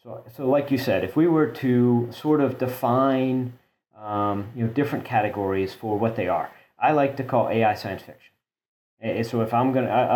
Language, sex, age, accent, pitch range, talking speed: English, male, 40-59, American, 110-130 Hz, 195 wpm